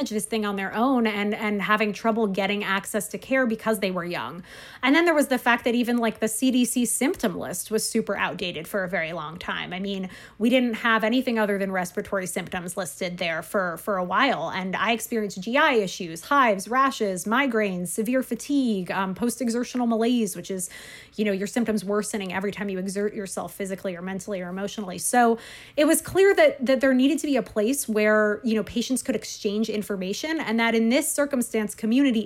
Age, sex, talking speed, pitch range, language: 20-39, female, 205 wpm, 205-245 Hz, English